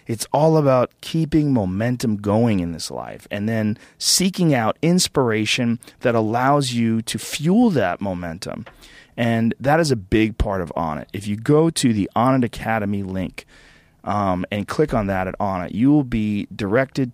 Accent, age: American, 30-49